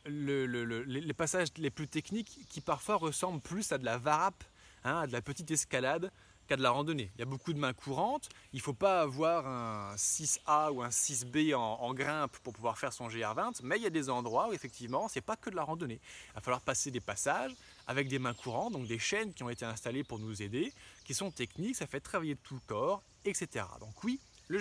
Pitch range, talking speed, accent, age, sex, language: 120-175 Hz, 240 wpm, French, 20-39, male, French